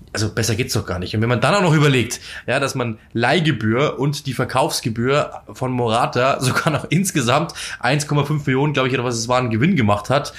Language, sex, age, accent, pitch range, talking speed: German, male, 20-39, German, 115-145 Hz, 215 wpm